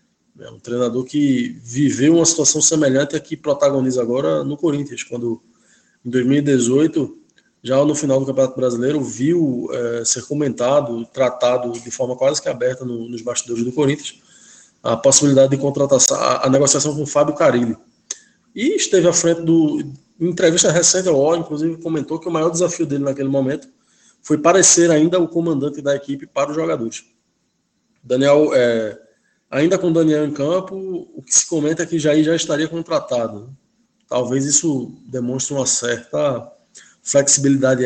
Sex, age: male, 20-39